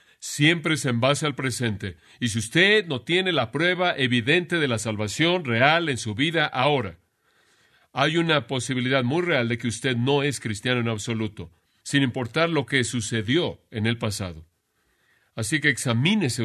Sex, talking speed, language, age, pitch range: male, 170 wpm, Spanish, 40-59, 115-160 Hz